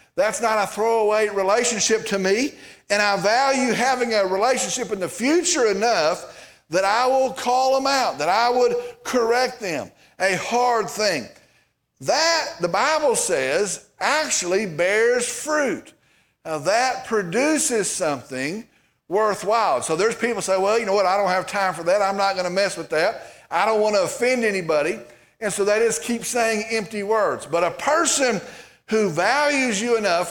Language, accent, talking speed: English, American, 165 wpm